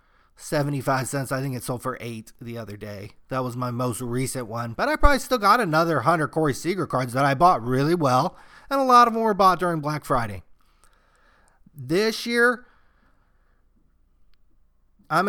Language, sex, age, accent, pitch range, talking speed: English, male, 30-49, American, 125-160 Hz, 175 wpm